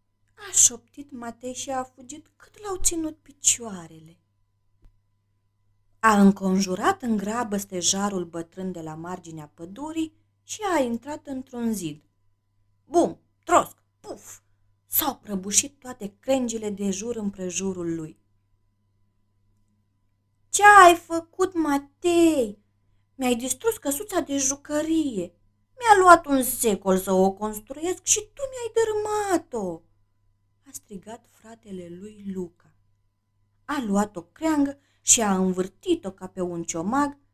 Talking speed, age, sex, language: 115 wpm, 20-39, female, Romanian